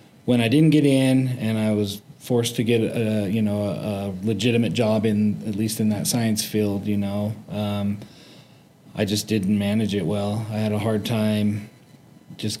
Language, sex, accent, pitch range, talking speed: English, male, American, 105-125 Hz, 190 wpm